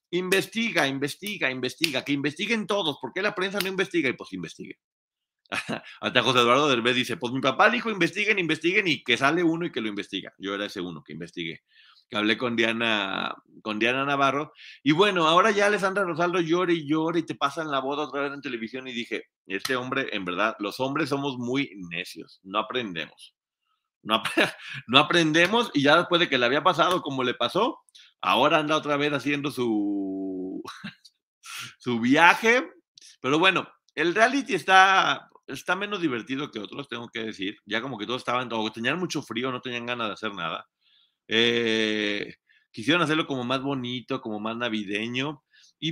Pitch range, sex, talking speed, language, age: 115-175 Hz, male, 175 wpm, Spanish, 40-59